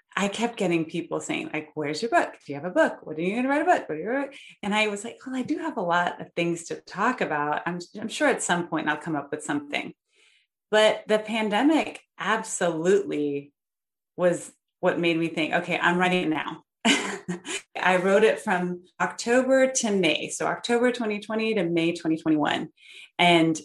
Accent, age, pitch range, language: American, 30-49, 160-205 Hz, English